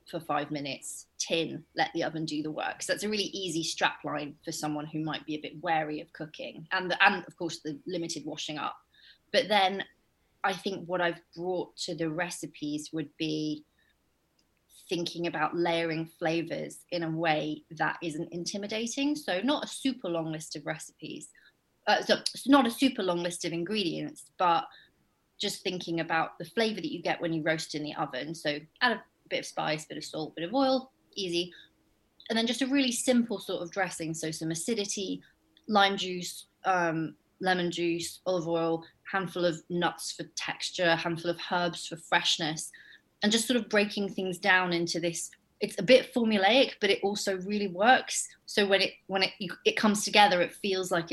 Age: 30-49